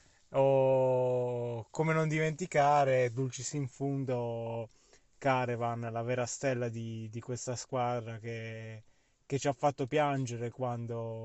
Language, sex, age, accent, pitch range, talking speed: Italian, male, 20-39, native, 120-135 Hz, 125 wpm